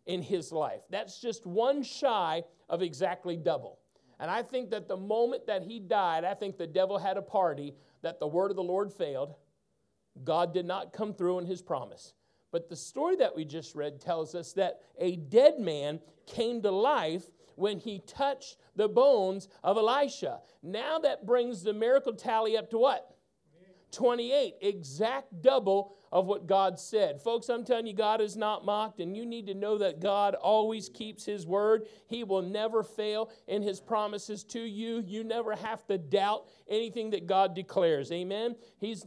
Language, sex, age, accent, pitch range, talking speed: English, male, 50-69, American, 185-230 Hz, 185 wpm